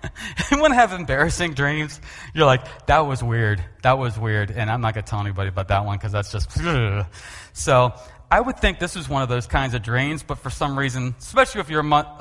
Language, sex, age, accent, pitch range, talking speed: English, male, 30-49, American, 105-155 Hz, 215 wpm